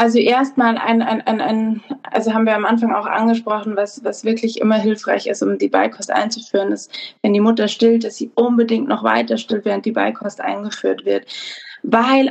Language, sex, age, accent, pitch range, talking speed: German, female, 20-39, German, 220-245 Hz, 195 wpm